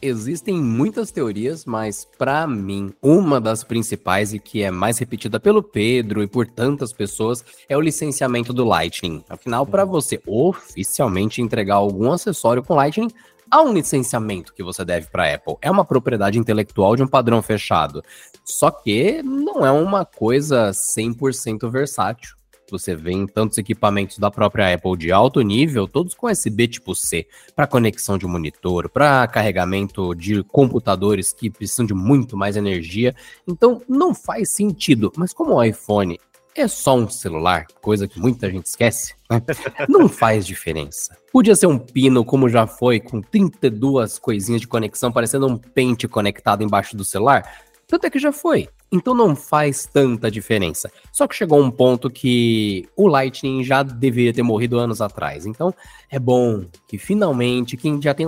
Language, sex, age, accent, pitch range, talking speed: Portuguese, male, 20-39, Brazilian, 105-170 Hz, 165 wpm